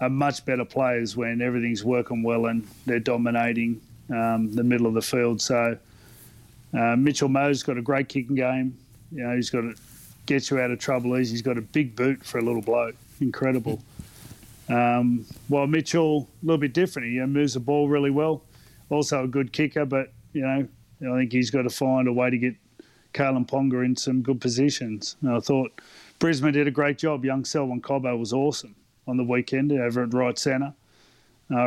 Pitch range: 120-135 Hz